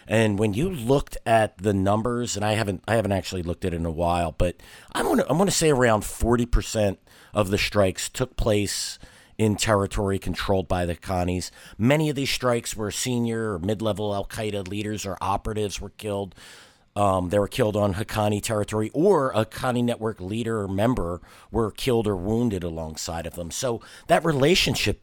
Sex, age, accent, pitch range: male, 50-69, American, 90-110 Hz